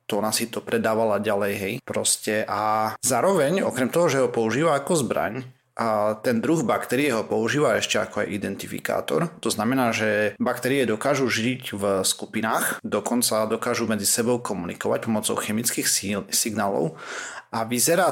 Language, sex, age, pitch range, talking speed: Slovak, male, 40-59, 110-125 Hz, 150 wpm